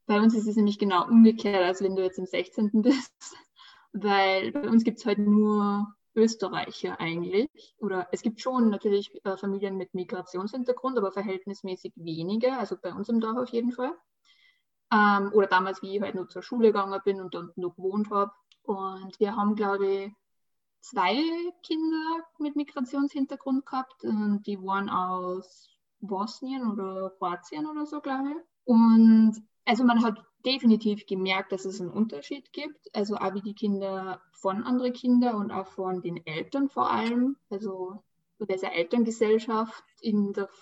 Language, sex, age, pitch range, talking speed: German, female, 20-39, 190-230 Hz, 160 wpm